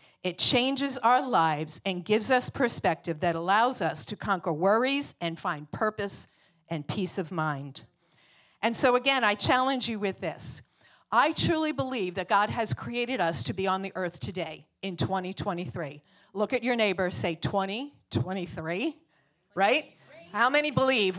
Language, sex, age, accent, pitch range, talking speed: English, female, 50-69, American, 165-235 Hz, 160 wpm